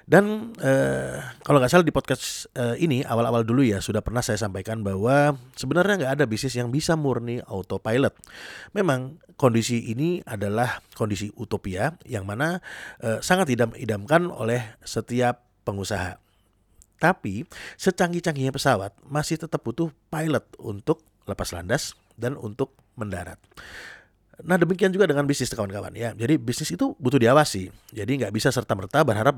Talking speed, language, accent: 145 wpm, Indonesian, native